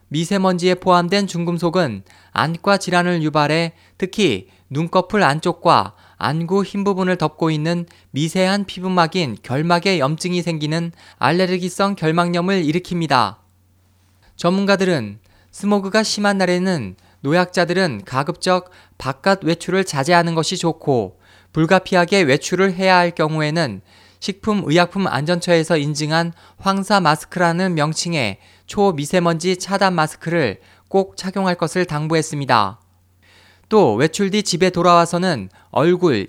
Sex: male